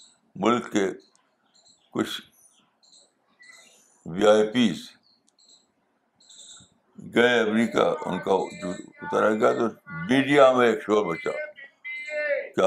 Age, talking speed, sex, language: 60-79, 85 wpm, male, Urdu